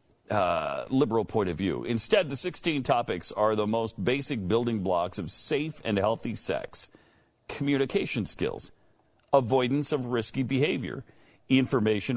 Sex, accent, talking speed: male, American, 135 wpm